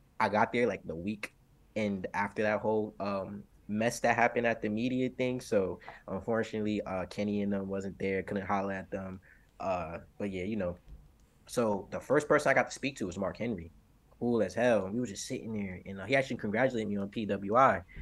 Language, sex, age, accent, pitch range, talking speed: English, male, 20-39, American, 100-120 Hz, 215 wpm